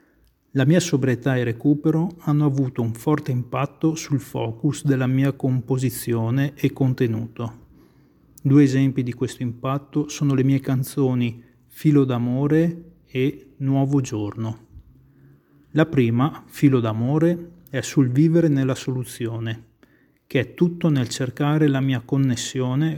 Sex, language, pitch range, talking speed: male, English, 125-150 Hz, 125 wpm